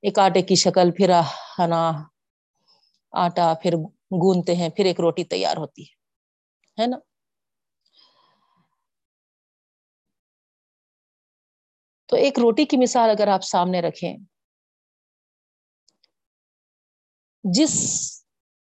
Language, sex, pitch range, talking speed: Urdu, female, 180-240 Hz, 85 wpm